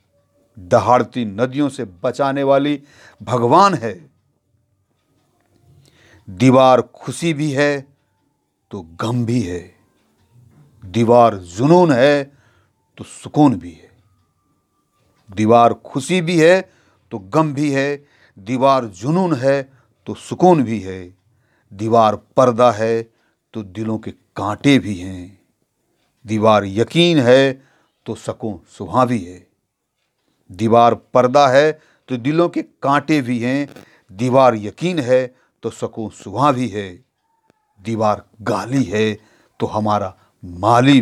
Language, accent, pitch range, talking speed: Hindi, native, 105-140 Hz, 115 wpm